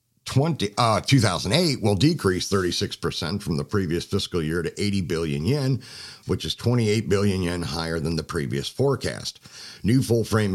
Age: 50-69